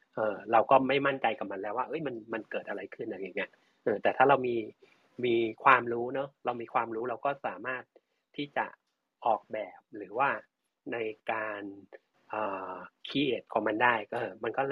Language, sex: Thai, male